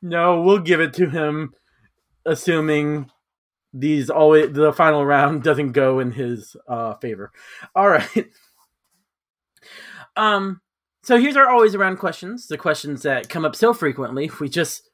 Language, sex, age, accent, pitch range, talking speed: English, male, 30-49, American, 145-220 Hz, 145 wpm